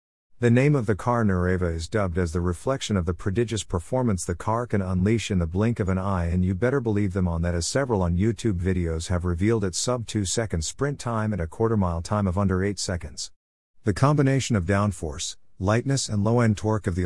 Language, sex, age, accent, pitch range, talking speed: English, male, 50-69, American, 90-115 Hz, 230 wpm